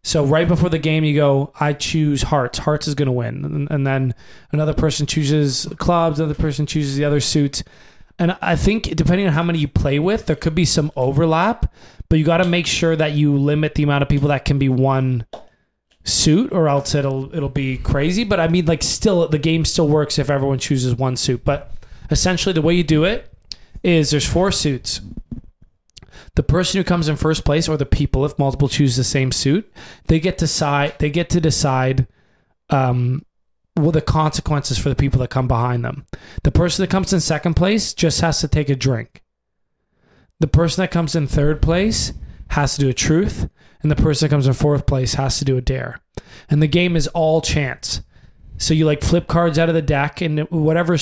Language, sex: English, male